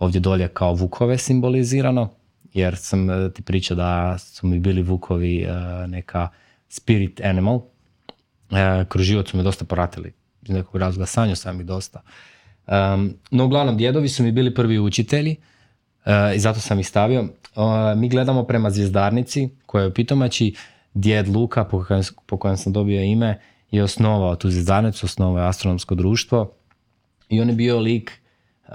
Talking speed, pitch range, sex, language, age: 140 wpm, 95-115 Hz, male, Croatian, 20-39